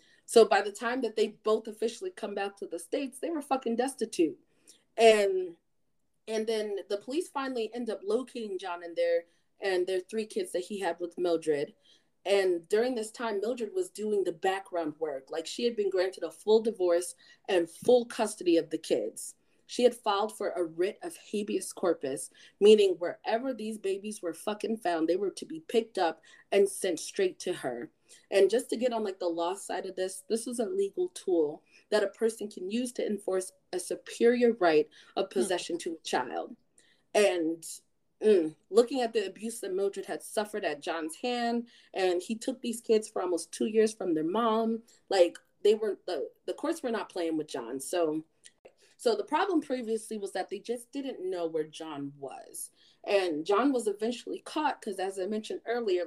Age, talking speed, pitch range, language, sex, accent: 30-49, 195 wpm, 180-240 Hz, English, female, American